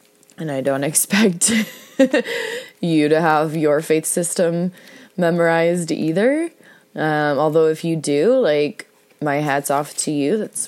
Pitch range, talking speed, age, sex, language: 130-160 Hz, 135 wpm, 20-39, female, English